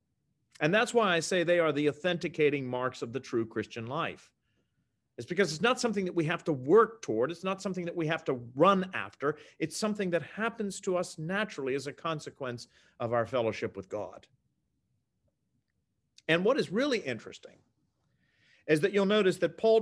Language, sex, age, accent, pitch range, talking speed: English, male, 40-59, American, 140-190 Hz, 185 wpm